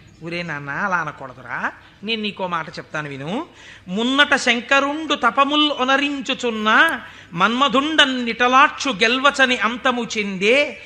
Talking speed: 90 wpm